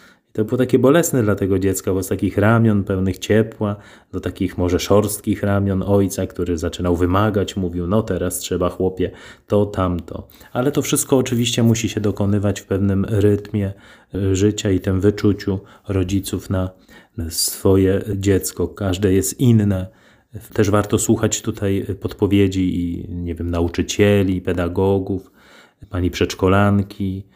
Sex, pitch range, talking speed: male, 95-110 Hz, 135 wpm